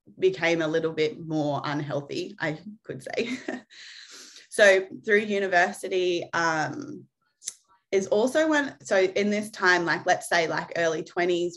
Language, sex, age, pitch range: English, female, 20-39, 170-205 Hz